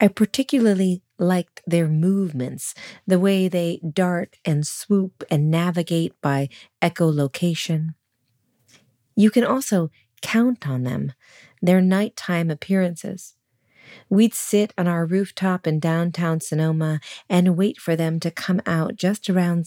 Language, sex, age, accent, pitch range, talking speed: English, female, 40-59, American, 155-190 Hz, 125 wpm